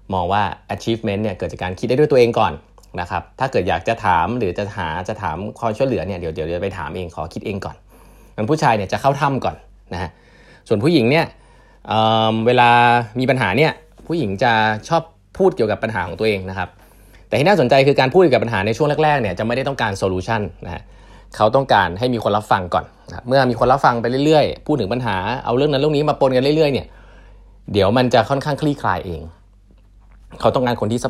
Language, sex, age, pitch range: Thai, male, 20-39, 95-125 Hz